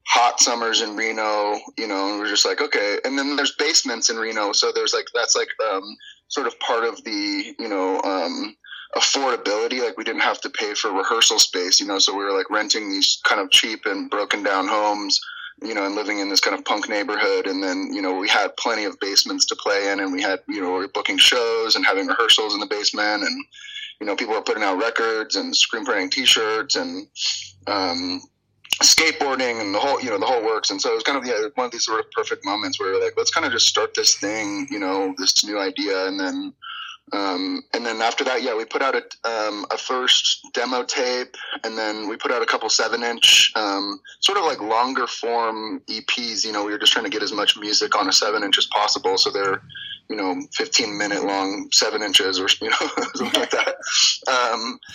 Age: 30-49